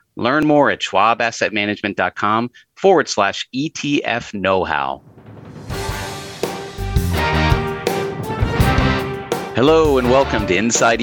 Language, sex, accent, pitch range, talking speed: English, male, American, 95-125 Hz, 70 wpm